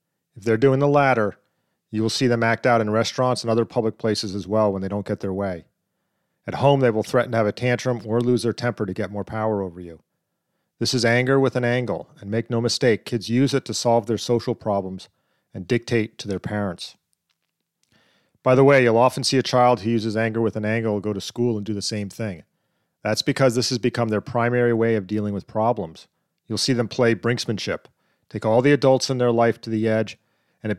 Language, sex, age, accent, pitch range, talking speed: English, male, 40-59, American, 110-130 Hz, 230 wpm